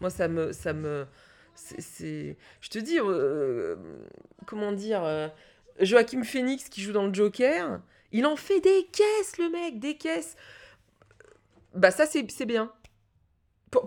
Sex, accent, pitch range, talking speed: female, French, 180-240 Hz, 145 wpm